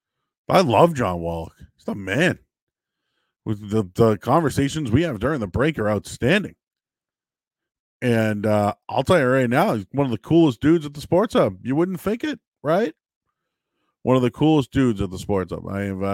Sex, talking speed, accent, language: male, 185 wpm, American, English